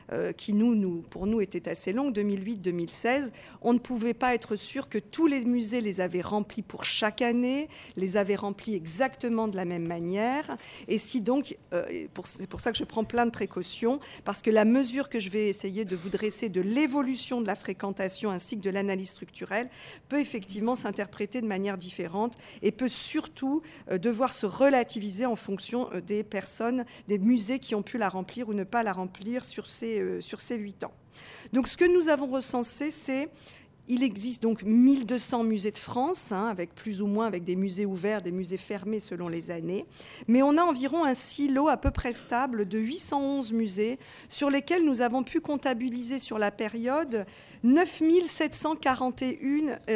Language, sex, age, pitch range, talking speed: French, female, 50-69, 200-260 Hz, 185 wpm